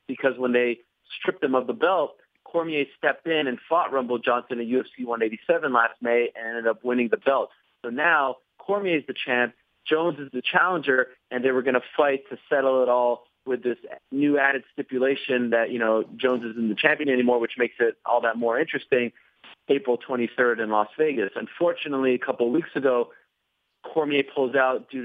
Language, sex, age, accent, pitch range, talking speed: English, male, 30-49, American, 120-140 Hz, 195 wpm